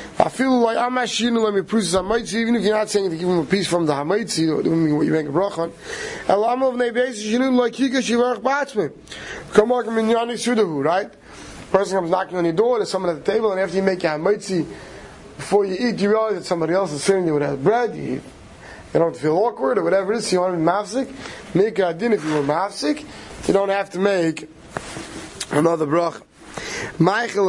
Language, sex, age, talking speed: English, male, 30-49, 225 wpm